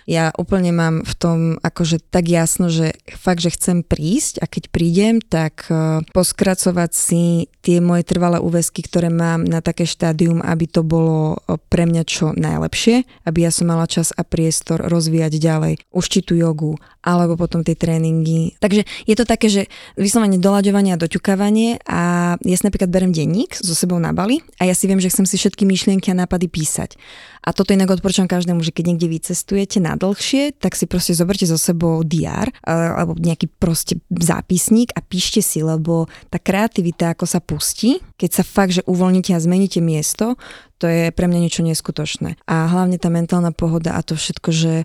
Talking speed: 185 wpm